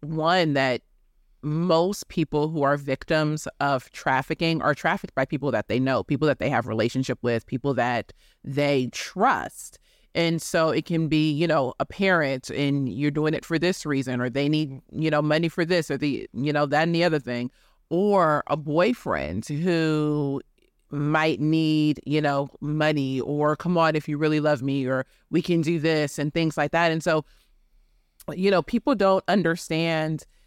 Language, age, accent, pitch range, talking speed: English, 30-49, American, 145-175 Hz, 180 wpm